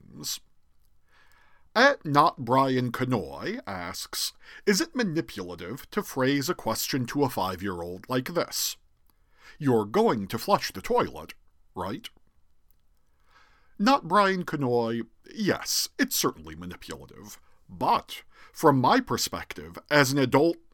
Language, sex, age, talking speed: English, male, 50-69, 115 wpm